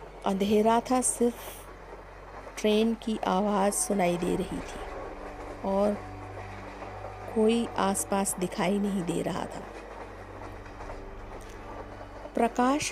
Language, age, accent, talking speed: Hindi, 50-69, native, 90 wpm